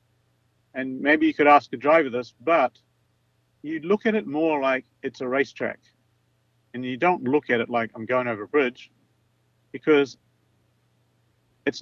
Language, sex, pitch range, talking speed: English, male, 120-150 Hz, 160 wpm